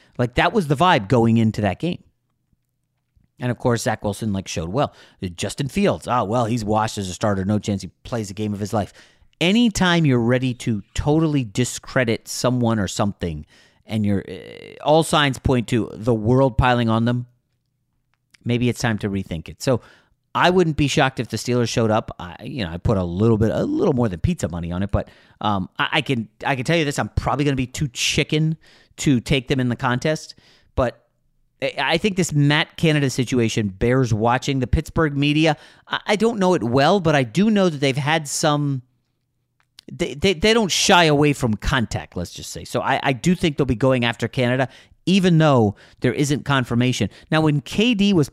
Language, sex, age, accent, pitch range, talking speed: English, male, 40-59, American, 110-155 Hz, 205 wpm